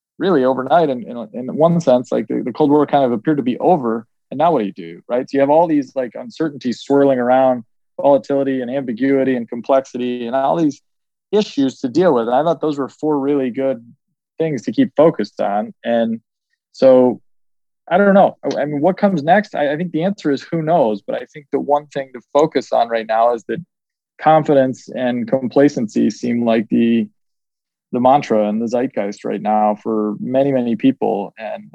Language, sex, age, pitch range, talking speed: English, male, 20-39, 115-145 Hz, 200 wpm